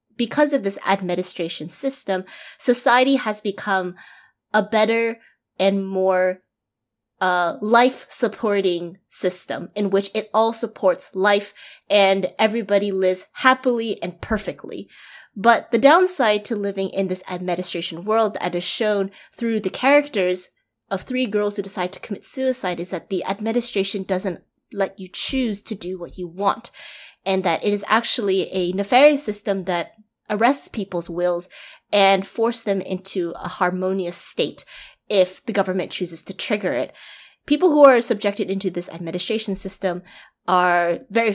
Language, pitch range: English, 185-220 Hz